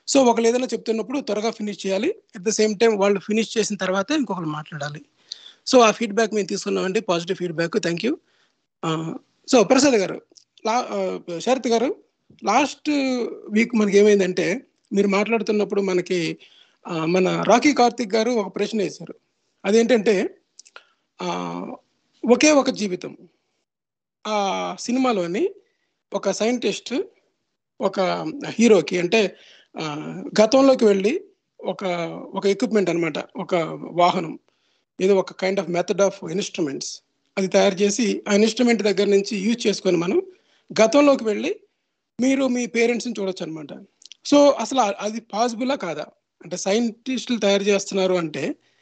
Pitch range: 190-245 Hz